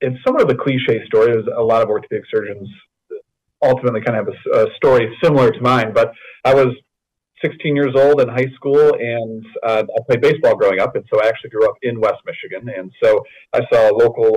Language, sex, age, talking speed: English, male, 40-59, 220 wpm